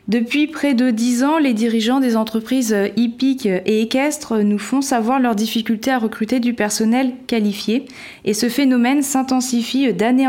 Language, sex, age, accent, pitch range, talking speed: French, female, 20-39, French, 205-255 Hz, 155 wpm